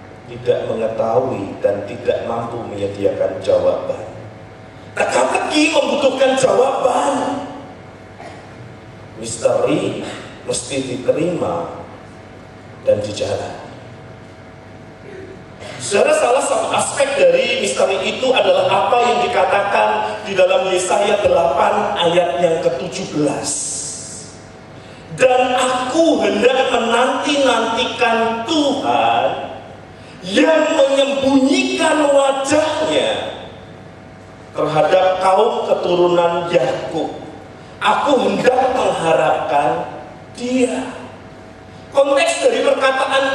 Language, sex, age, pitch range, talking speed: Malay, male, 40-59, 190-280 Hz, 70 wpm